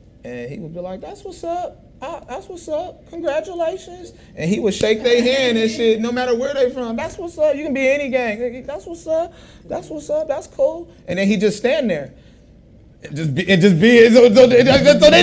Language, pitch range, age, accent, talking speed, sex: English, 205-300 Hz, 30-49, American, 250 wpm, male